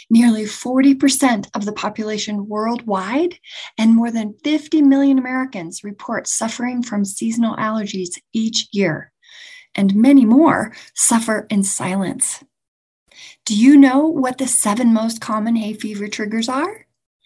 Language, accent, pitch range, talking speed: English, American, 205-275 Hz, 130 wpm